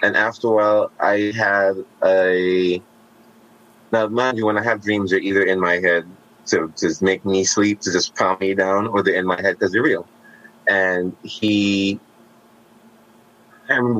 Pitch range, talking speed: 95-110 Hz, 175 wpm